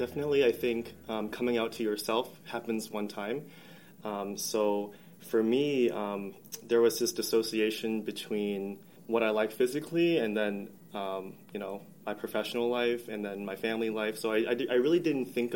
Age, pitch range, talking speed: 20-39, 105-125 Hz, 175 wpm